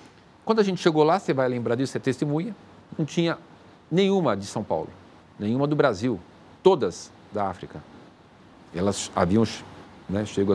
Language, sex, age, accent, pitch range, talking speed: Portuguese, male, 50-69, Brazilian, 110-155 Hz, 160 wpm